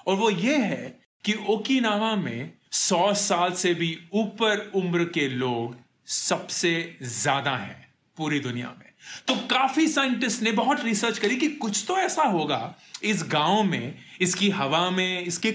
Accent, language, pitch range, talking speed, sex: native, Hindi, 175-235 Hz, 155 wpm, male